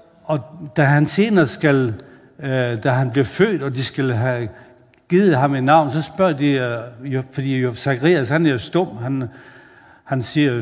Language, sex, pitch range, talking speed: Danish, male, 135-180 Hz, 180 wpm